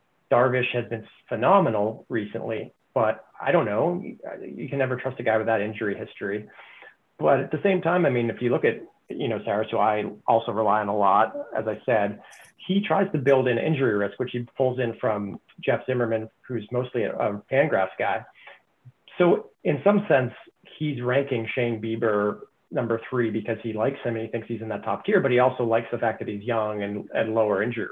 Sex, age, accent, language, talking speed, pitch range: male, 40-59, American, English, 210 wpm, 110-135 Hz